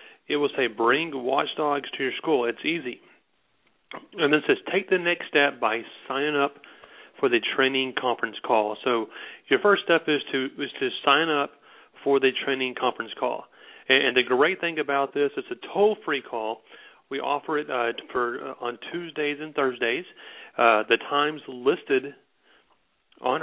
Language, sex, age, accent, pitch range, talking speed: English, male, 40-59, American, 125-155 Hz, 170 wpm